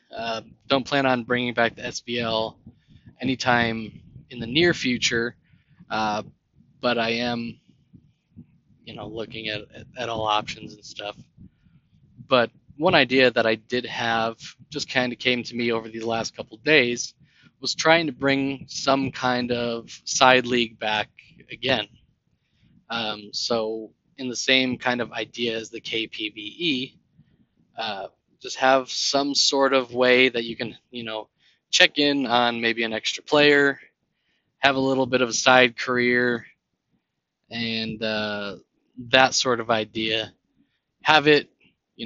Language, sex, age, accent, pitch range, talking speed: English, male, 20-39, American, 115-130 Hz, 145 wpm